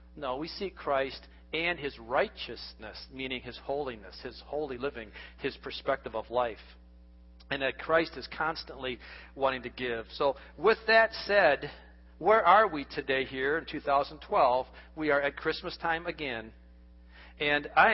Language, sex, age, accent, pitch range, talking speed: English, male, 40-59, American, 115-165 Hz, 145 wpm